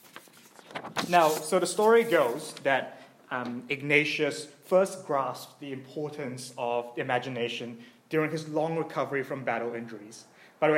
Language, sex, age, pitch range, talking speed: English, male, 30-49, 135-175 Hz, 130 wpm